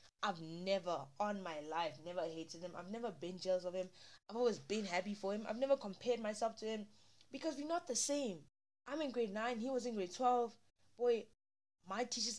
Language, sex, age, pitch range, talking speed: English, female, 20-39, 185-240 Hz, 210 wpm